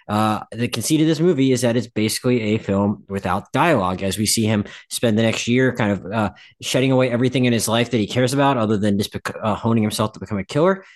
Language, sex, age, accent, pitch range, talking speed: English, male, 20-39, American, 110-140 Hz, 245 wpm